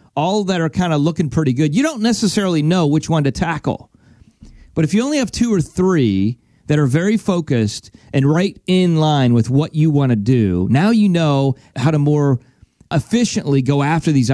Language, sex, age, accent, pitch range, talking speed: English, male, 30-49, American, 120-185 Hz, 200 wpm